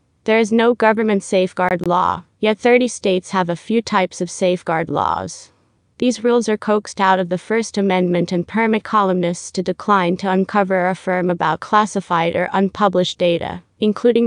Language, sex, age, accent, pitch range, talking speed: English, female, 30-49, American, 180-210 Hz, 170 wpm